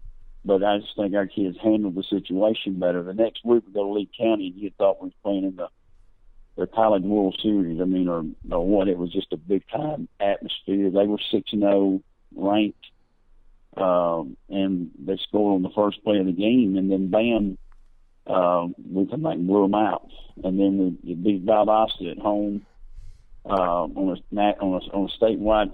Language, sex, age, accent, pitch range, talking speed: English, male, 50-69, American, 95-110 Hz, 195 wpm